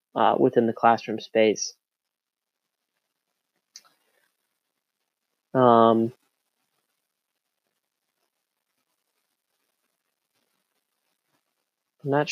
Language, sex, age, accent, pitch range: English, male, 30-49, American, 120-150 Hz